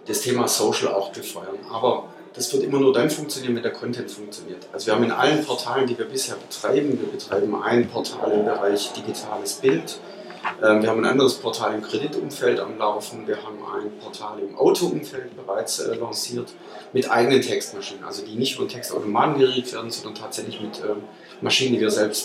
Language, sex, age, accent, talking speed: German, male, 30-49, German, 185 wpm